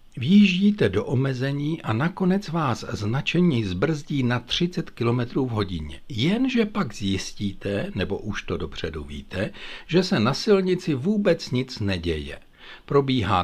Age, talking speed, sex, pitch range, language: 60-79, 130 wpm, male, 100-145 Hz, Czech